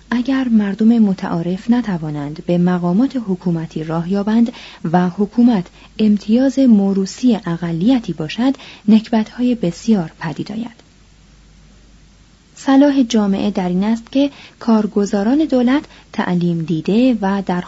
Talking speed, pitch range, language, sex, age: 100 wpm, 180-240 Hz, Persian, female, 30-49